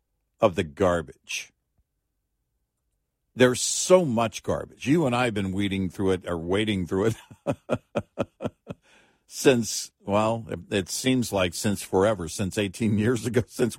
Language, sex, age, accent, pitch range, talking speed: English, male, 50-69, American, 95-130 Hz, 135 wpm